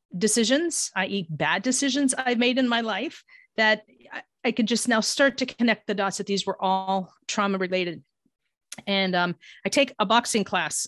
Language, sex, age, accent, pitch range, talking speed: English, female, 40-59, American, 190-230 Hz, 180 wpm